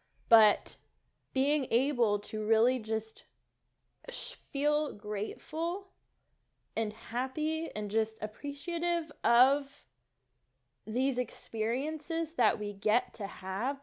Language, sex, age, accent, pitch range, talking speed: English, female, 10-29, American, 190-260 Hz, 90 wpm